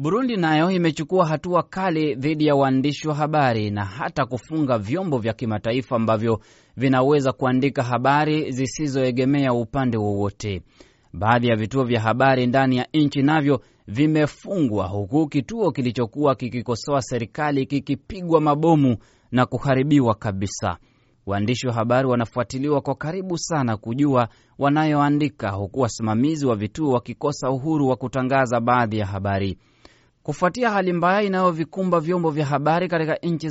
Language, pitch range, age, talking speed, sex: Swahili, 115-145 Hz, 30-49, 125 wpm, male